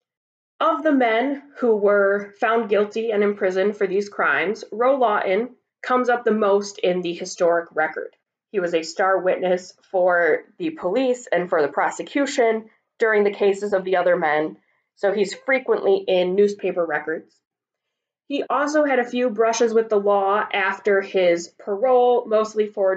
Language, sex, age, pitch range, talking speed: English, female, 20-39, 180-230 Hz, 160 wpm